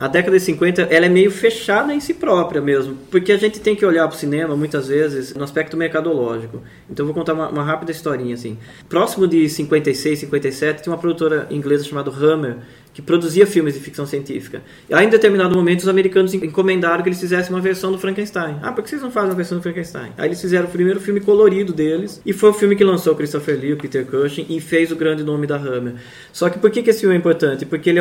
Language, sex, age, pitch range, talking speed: Portuguese, male, 20-39, 150-185 Hz, 240 wpm